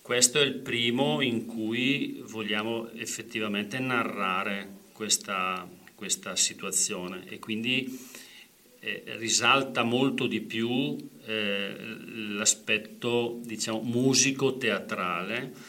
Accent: native